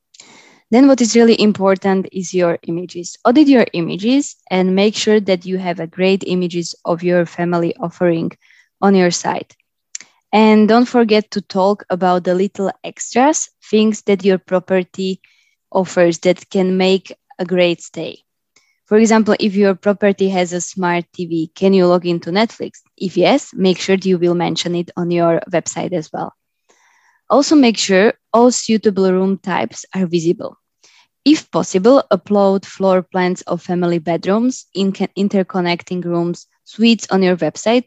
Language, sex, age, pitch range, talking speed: English, female, 20-39, 175-210 Hz, 155 wpm